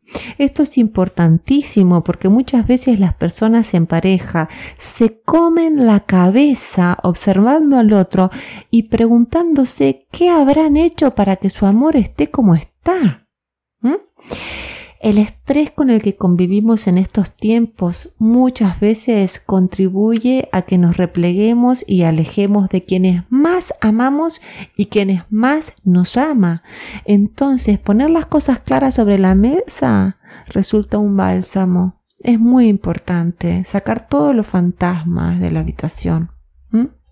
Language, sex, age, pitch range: Spanish, female, 30-49, 180-245 Hz